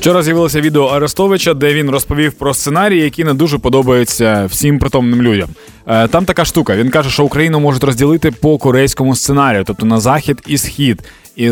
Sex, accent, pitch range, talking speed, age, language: male, native, 120-155 Hz, 175 wpm, 20-39, Ukrainian